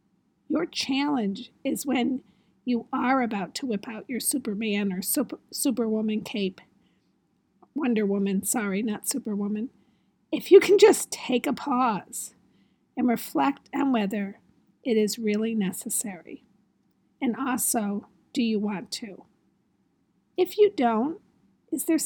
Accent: American